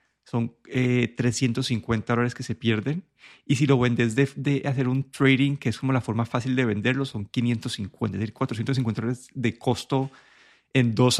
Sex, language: male, Spanish